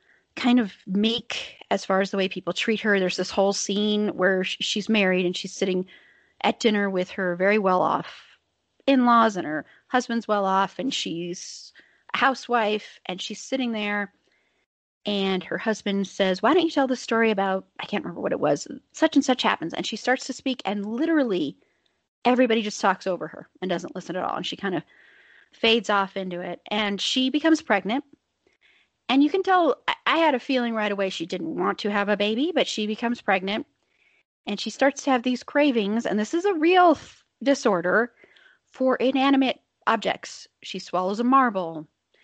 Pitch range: 190-255 Hz